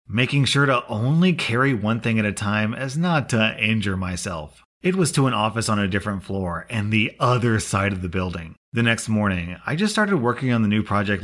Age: 30-49